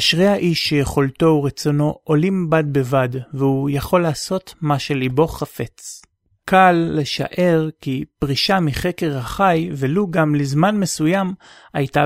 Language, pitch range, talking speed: Hebrew, 140-170 Hz, 120 wpm